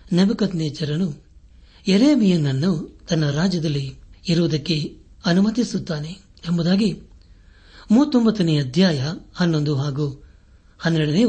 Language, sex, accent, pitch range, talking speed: Kannada, male, native, 120-170 Hz, 55 wpm